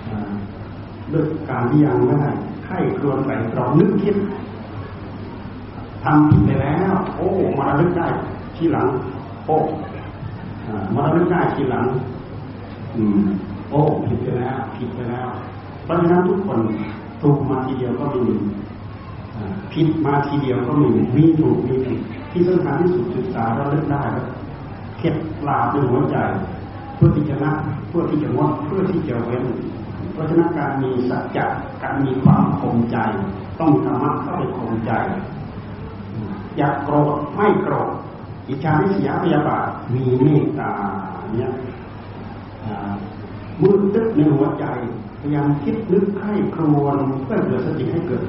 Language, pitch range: Thai, 110-150 Hz